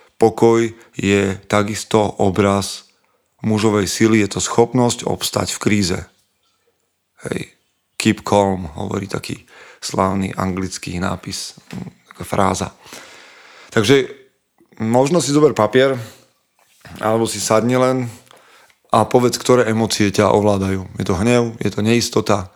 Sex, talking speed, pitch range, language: male, 115 wpm, 100-115 Hz, Slovak